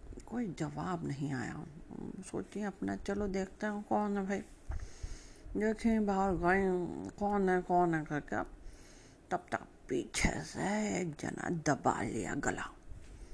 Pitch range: 145-200 Hz